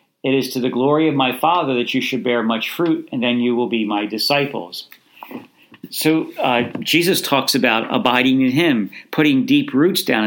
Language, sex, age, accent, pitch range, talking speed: English, male, 50-69, American, 120-140 Hz, 195 wpm